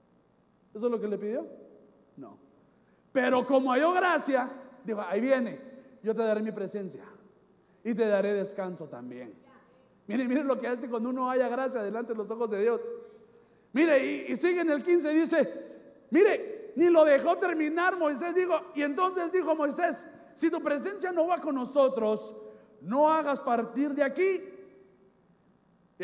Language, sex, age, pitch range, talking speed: Spanish, male, 40-59, 235-305 Hz, 165 wpm